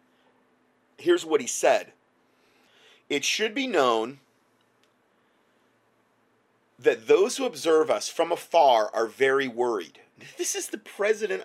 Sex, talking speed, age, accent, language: male, 115 wpm, 30-49, American, English